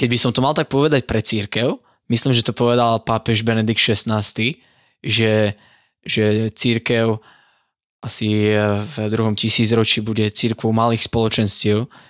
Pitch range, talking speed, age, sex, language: 110-120 Hz, 135 wpm, 20-39, male, Slovak